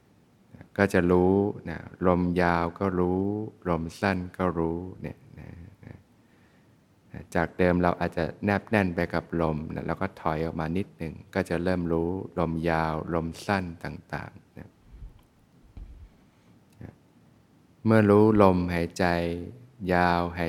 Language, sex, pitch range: Thai, male, 85-100 Hz